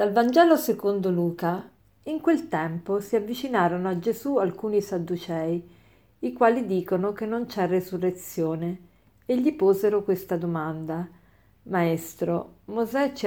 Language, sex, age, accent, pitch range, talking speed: Italian, female, 50-69, native, 170-215 Hz, 125 wpm